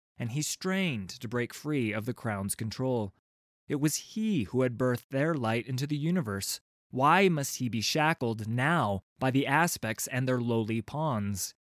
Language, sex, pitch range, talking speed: English, male, 100-135 Hz, 175 wpm